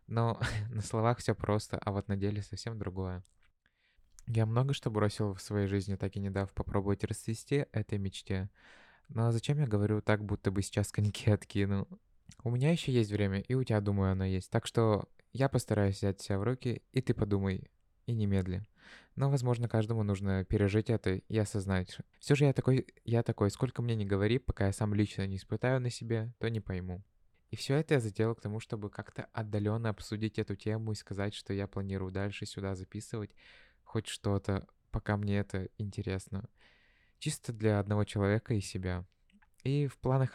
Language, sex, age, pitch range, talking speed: Russian, male, 20-39, 100-115 Hz, 185 wpm